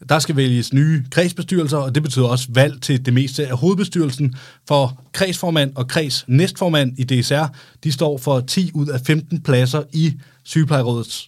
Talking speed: 165 wpm